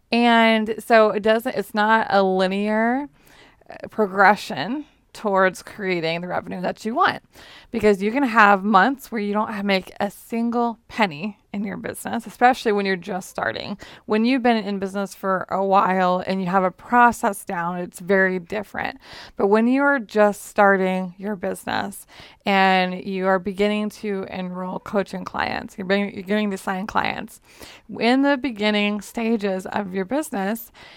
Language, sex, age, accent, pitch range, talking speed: English, female, 20-39, American, 195-230 Hz, 155 wpm